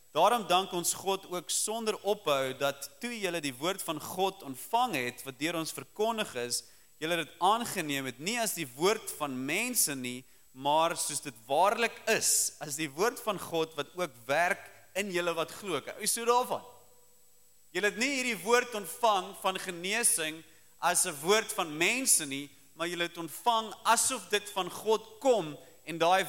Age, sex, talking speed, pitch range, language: 40-59, male, 180 wpm, 160-230 Hz, English